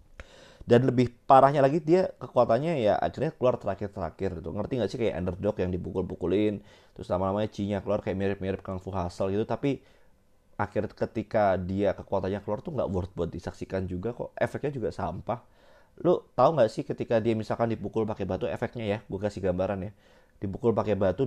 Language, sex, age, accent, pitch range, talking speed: Indonesian, male, 30-49, native, 95-125 Hz, 180 wpm